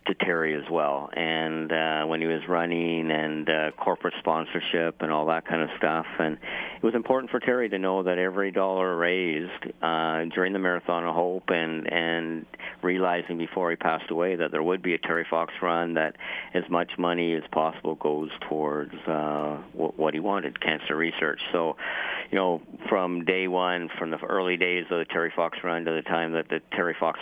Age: 50-69